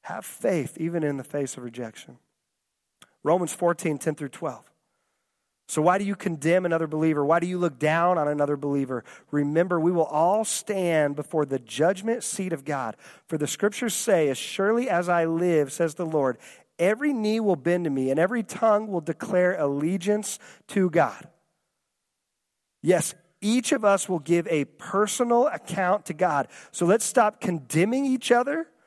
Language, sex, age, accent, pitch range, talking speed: English, male, 40-59, American, 155-200 Hz, 170 wpm